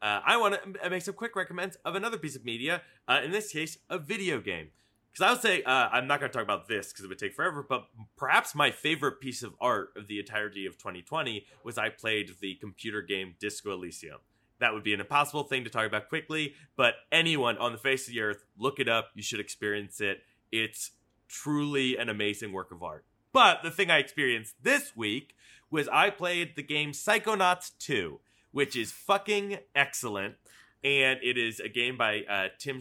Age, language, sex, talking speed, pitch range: 30-49, English, male, 210 wpm, 105-165 Hz